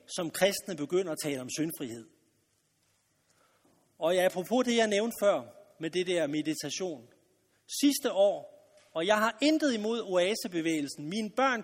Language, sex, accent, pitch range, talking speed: Danish, male, native, 195-285 Hz, 145 wpm